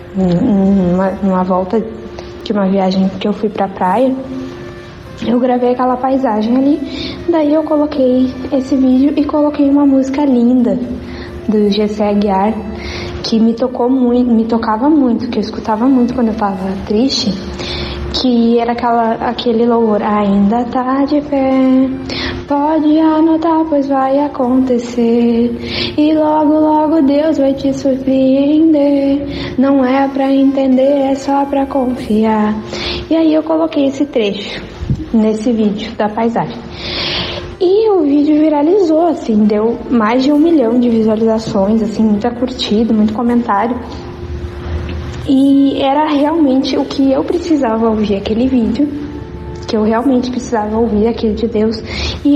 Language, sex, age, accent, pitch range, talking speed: Portuguese, female, 10-29, Brazilian, 225-285 Hz, 135 wpm